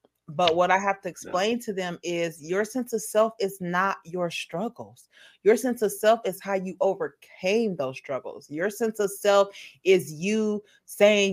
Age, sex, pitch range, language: 30-49, female, 175-210 Hz, English